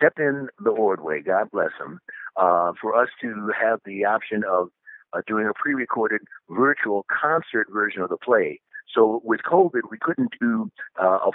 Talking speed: 185 wpm